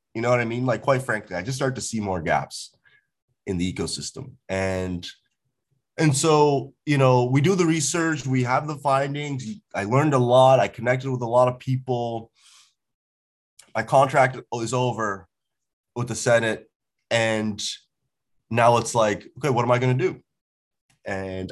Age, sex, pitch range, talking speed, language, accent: 30-49, male, 100-130 Hz, 170 wpm, English, American